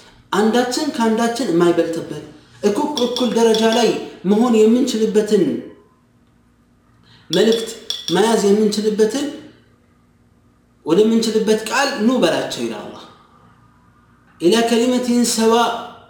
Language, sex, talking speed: Amharic, male, 60 wpm